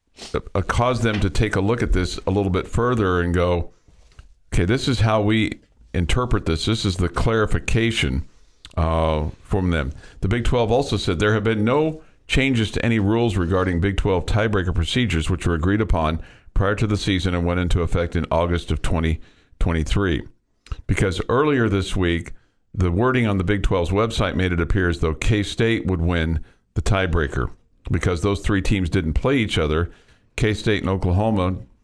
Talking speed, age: 180 wpm, 50-69